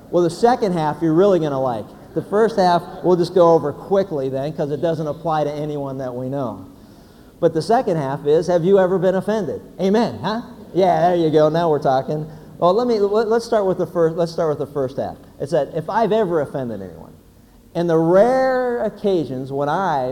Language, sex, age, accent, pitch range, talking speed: English, male, 50-69, American, 130-175 Hz, 220 wpm